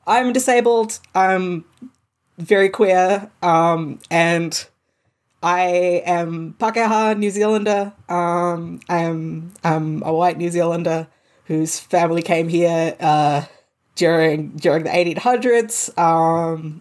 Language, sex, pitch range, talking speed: English, female, 165-195 Hz, 105 wpm